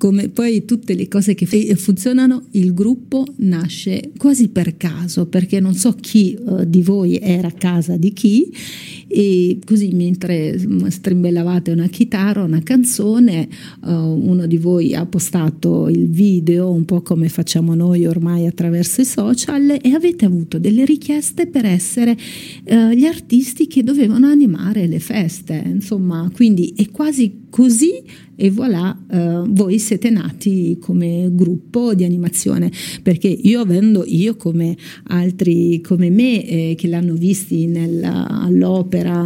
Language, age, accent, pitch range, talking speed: Italian, 40-59, native, 175-220 Hz, 145 wpm